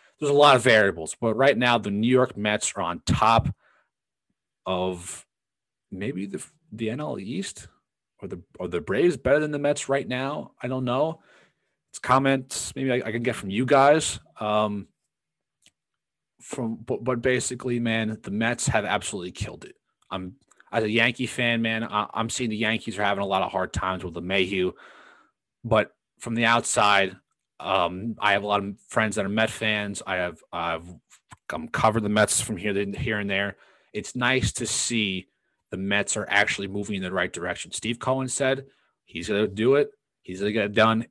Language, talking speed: English, 190 wpm